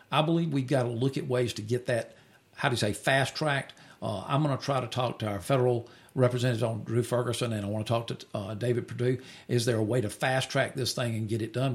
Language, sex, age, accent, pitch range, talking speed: English, male, 50-69, American, 115-145 Hz, 255 wpm